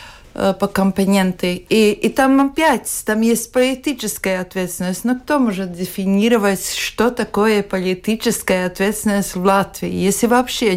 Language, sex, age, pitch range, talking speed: Russian, female, 50-69, 185-225 Hz, 125 wpm